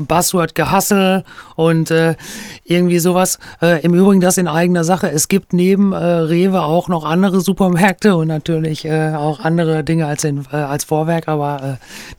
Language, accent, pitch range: German, German, 160-195 Hz